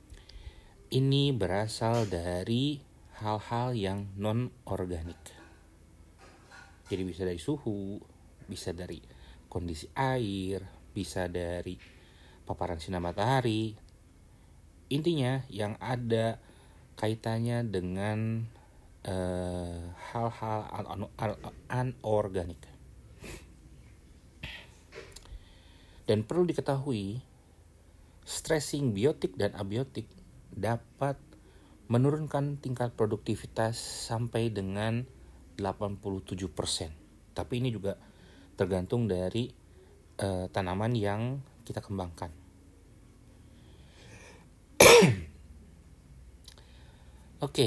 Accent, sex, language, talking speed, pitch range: native, male, Indonesian, 75 wpm, 90-115 Hz